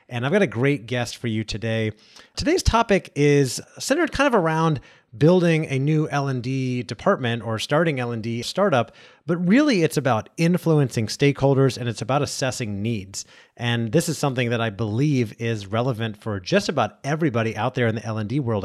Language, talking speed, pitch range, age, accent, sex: English, 175 wpm, 120-160 Hz, 30-49, American, male